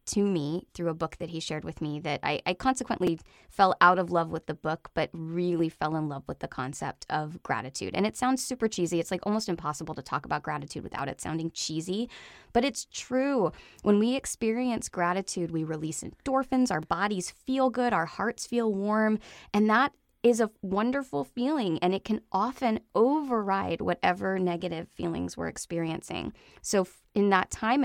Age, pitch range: 20-39, 165-210 Hz